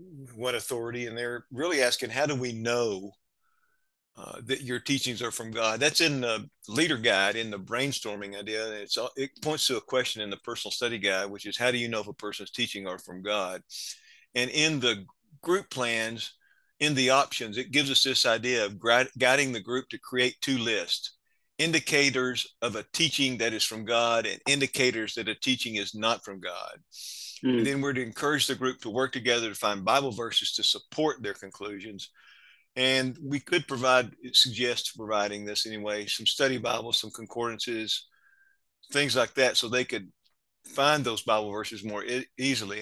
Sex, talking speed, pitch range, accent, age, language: male, 180 wpm, 110-135 Hz, American, 50-69, English